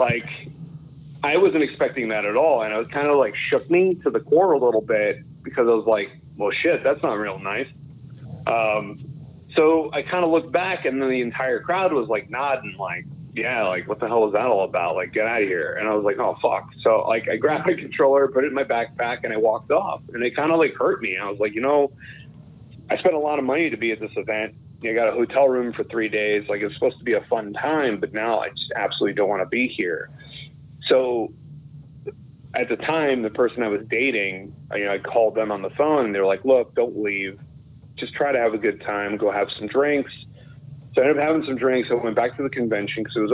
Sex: male